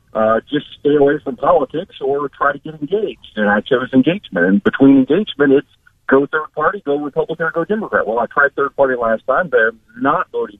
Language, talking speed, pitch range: English, 215 wpm, 135-205 Hz